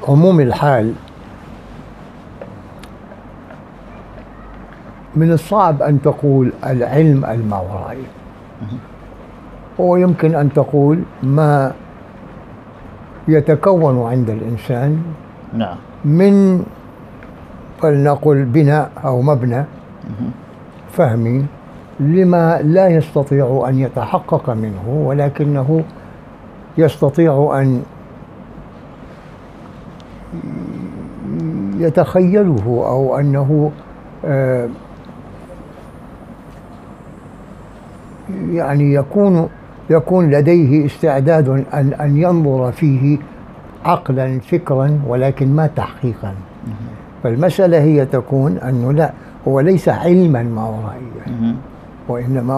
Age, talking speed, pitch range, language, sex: 60-79, 65 wpm, 125-160 Hz, English, male